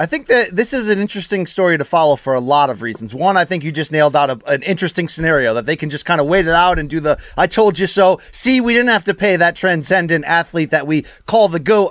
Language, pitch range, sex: English, 165-225 Hz, male